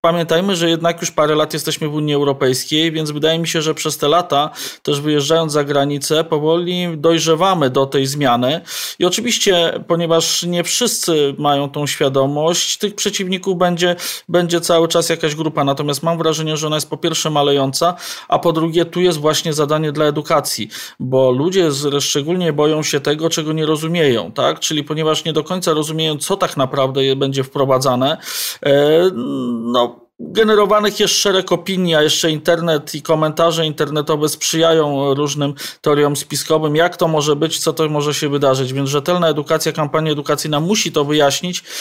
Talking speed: 165 wpm